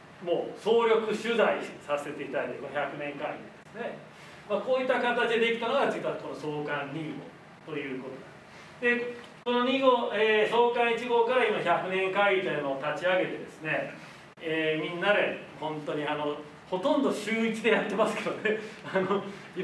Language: Japanese